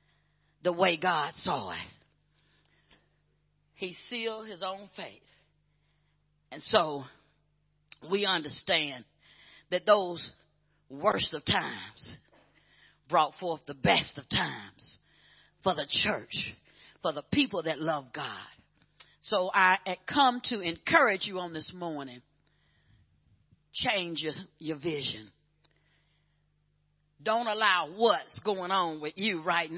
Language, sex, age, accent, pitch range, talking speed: English, female, 40-59, American, 150-240 Hz, 115 wpm